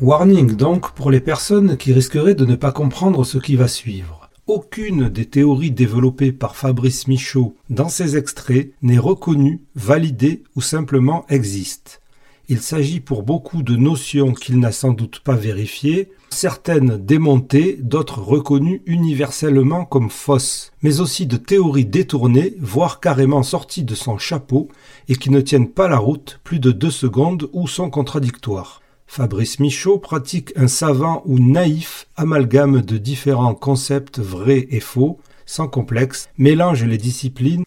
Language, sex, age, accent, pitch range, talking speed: French, male, 40-59, French, 125-150 Hz, 150 wpm